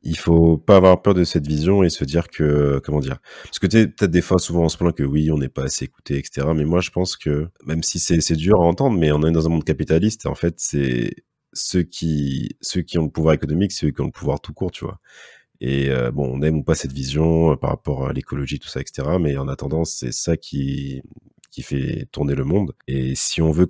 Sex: male